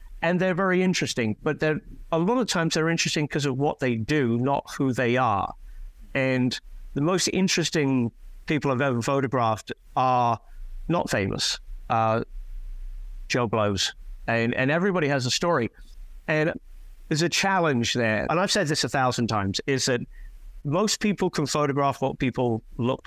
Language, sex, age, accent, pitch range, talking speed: English, male, 50-69, British, 120-165 Hz, 160 wpm